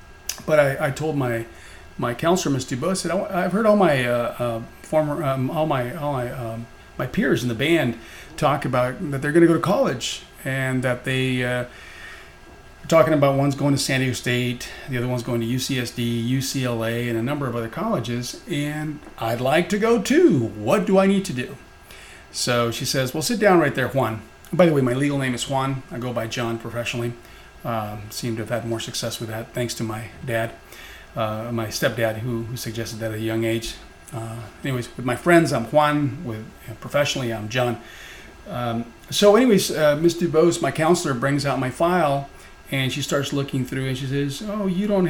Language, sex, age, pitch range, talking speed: English, male, 40-59, 115-150 Hz, 195 wpm